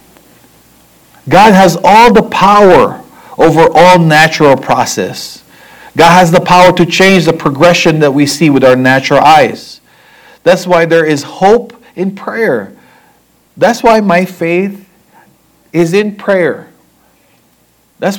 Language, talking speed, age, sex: English, 130 wpm, 40-59, male